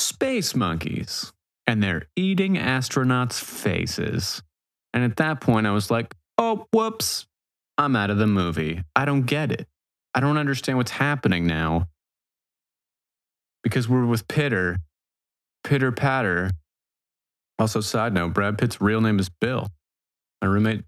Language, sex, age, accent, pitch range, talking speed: English, male, 30-49, American, 90-130 Hz, 140 wpm